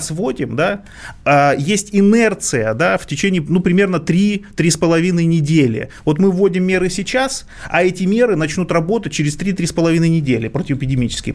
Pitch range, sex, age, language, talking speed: 145-190 Hz, male, 30-49, Russian, 130 wpm